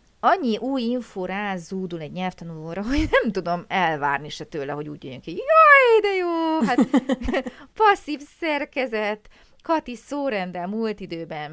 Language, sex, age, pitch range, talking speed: Hungarian, female, 30-49, 165-240 Hz, 135 wpm